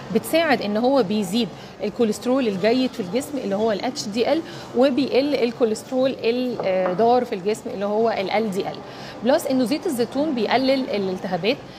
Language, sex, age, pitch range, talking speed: Arabic, female, 30-49, 205-260 Hz, 150 wpm